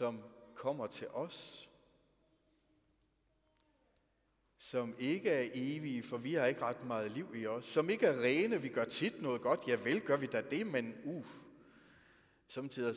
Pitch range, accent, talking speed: 115-165 Hz, native, 165 wpm